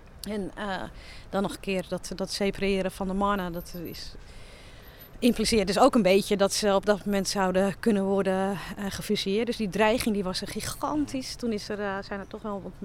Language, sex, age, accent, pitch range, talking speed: Dutch, female, 40-59, Dutch, 190-210 Hz, 205 wpm